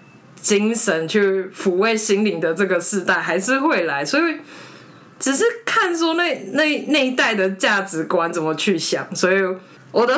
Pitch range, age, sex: 170-245 Hz, 20-39, female